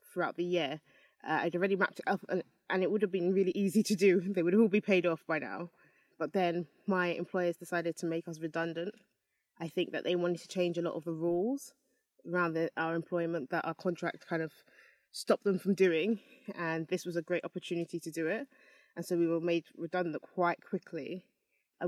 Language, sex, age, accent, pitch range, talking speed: English, female, 20-39, British, 165-190 Hz, 215 wpm